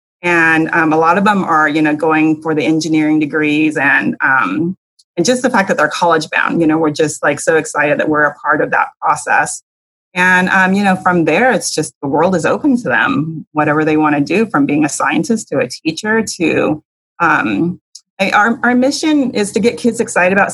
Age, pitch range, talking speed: 30-49, 160-195 Hz, 220 wpm